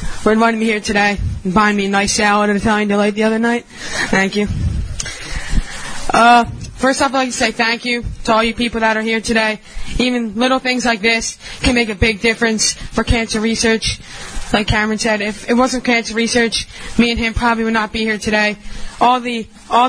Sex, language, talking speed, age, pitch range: female, English, 210 wpm, 20-39, 210-235 Hz